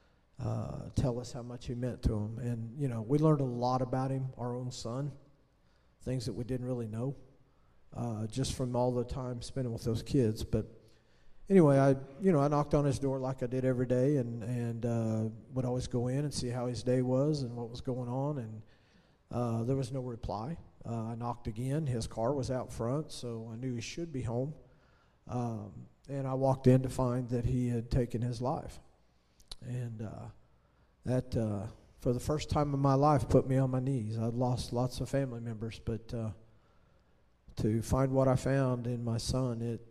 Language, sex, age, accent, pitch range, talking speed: English, male, 40-59, American, 115-130 Hz, 210 wpm